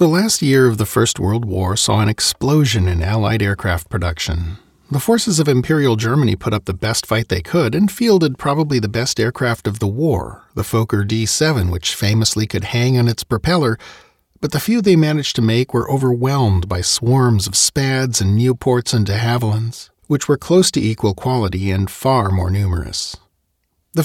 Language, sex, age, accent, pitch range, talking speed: English, male, 40-59, American, 105-155 Hz, 185 wpm